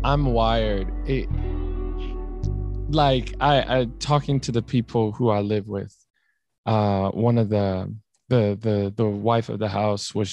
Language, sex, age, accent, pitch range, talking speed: English, male, 20-39, American, 105-125 Hz, 150 wpm